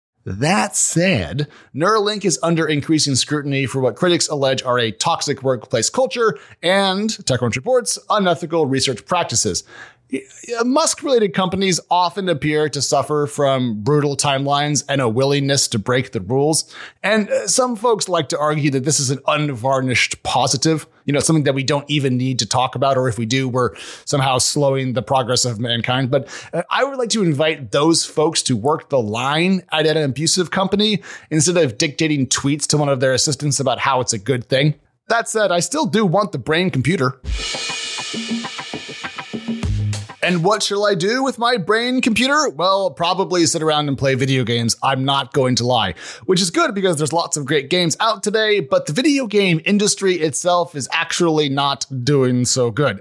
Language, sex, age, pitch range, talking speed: English, male, 30-49, 135-180 Hz, 180 wpm